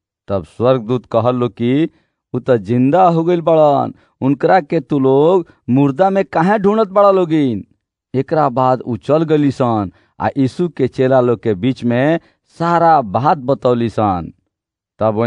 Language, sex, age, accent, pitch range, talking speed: Marathi, male, 50-69, native, 115-160 Hz, 130 wpm